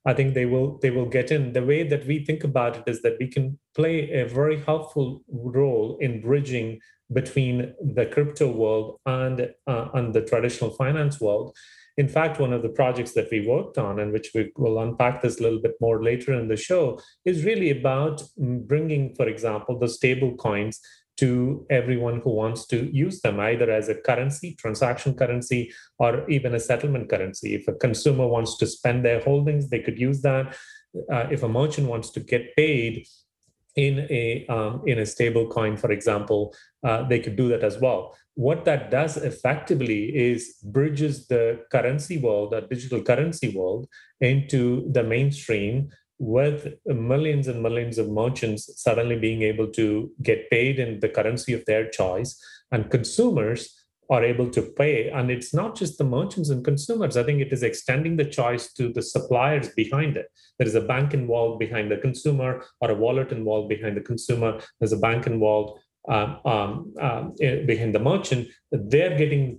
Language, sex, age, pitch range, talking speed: English, male, 30-49, 115-140 Hz, 180 wpm